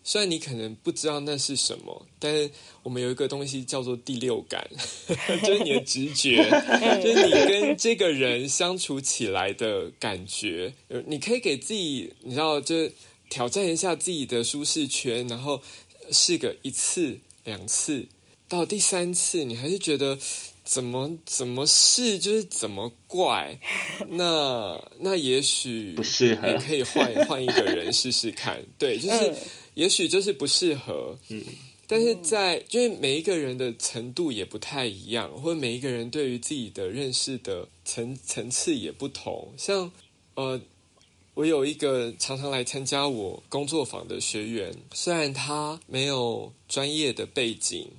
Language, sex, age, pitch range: Chinese, male, 20-39, 125-170 Hz